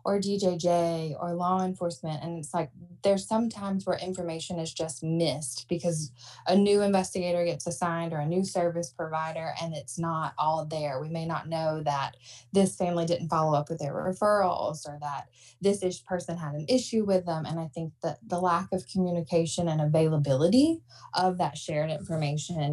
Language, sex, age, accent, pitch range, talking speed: English, female, 20-39, American, 150-180 Hz, 180 wpm